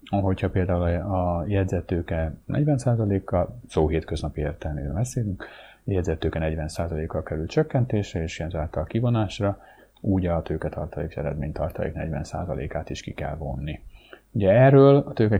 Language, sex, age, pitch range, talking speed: Hungarian, male, 30-49, 80-95 Hz, 115 wpm